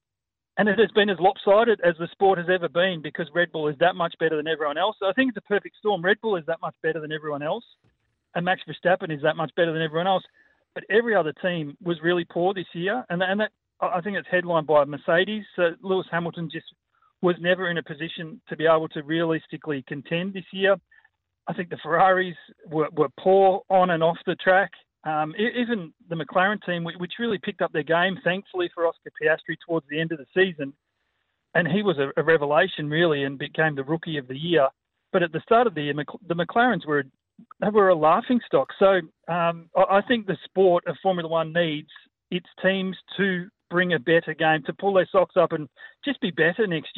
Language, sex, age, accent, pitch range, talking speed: English, male, 40-59, Australian, 160-190 Hz, 215 wpm